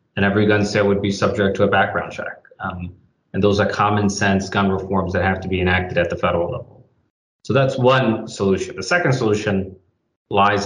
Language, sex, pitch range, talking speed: English, male, 95-110 Hz, 205 wpm